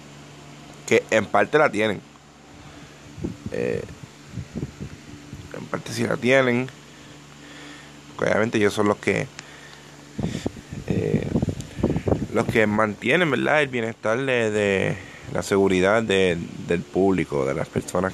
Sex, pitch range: male, 95-115 Hz